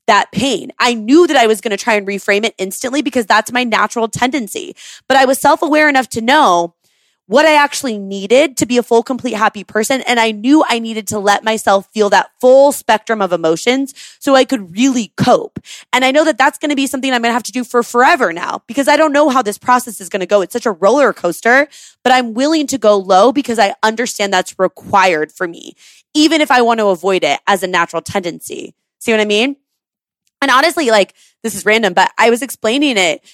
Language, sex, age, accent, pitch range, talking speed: English, female, 20-39, American, 200-270 Hz, 235 wpm